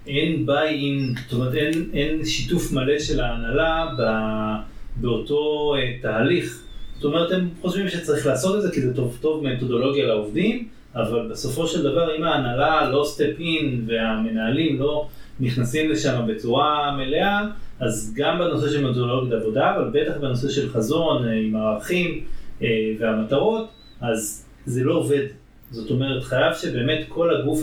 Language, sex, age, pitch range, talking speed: Hebrew, male, 30-49, 125-160 Hz, 140 wpm